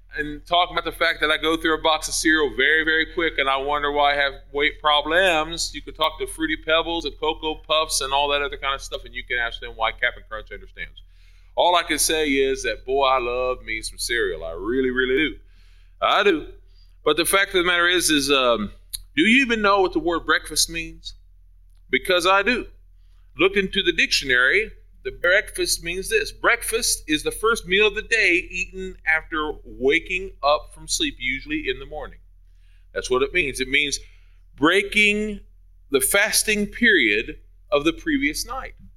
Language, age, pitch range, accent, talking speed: English, 30-49, 130-195 Hz, American, 195 wpm